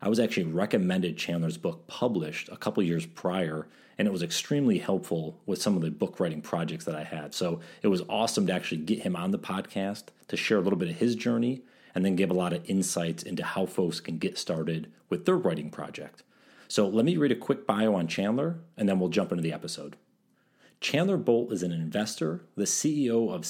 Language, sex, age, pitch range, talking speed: English, male, 40-59, 90-120 Hz, 220 wpm